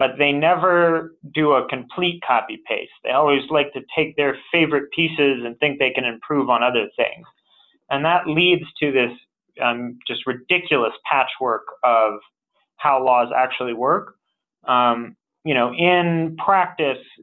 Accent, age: American, 30-49